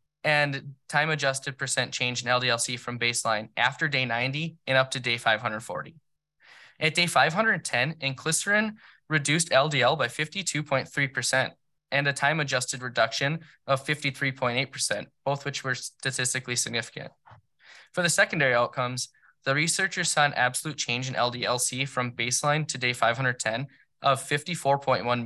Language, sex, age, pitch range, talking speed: English, male, 10-29, 120-150 Hz, 135 wpm